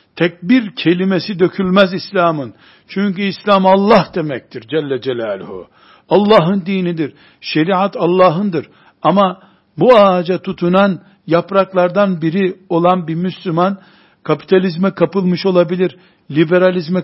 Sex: male